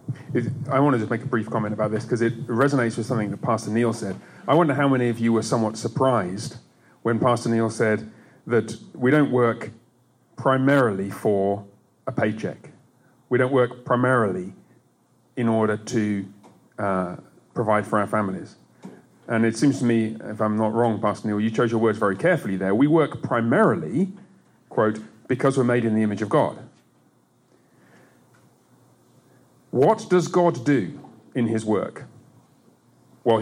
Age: 30-49